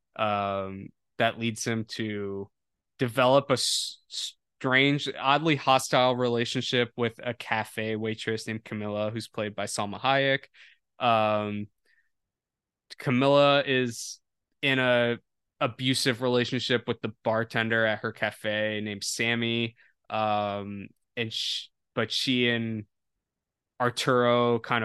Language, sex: English, male